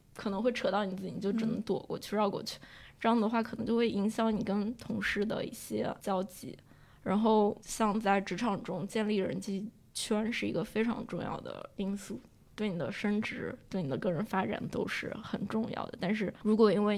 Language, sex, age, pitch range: Chinese, female, 10-29, 195-225 Hz